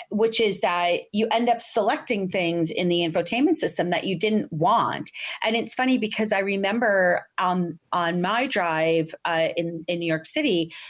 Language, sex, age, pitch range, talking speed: English, female, 30-49, 165-215 Hz, 175 wpm